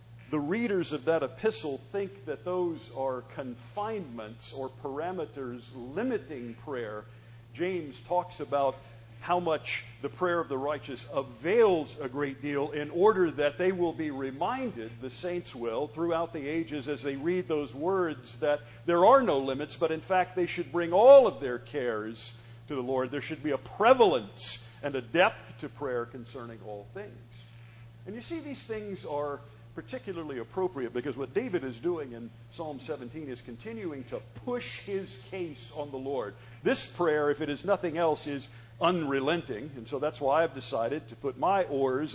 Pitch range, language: 120-165 Hz, English